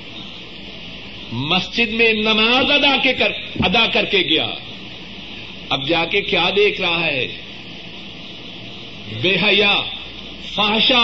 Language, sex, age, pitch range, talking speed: Urdu, male, 50-69, 180-265 Hz, 105 wpm